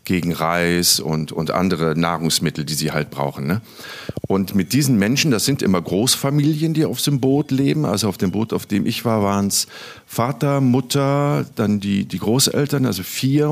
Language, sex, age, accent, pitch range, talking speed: German, male, 50-69, German, 90-125 Hz, 185 wpm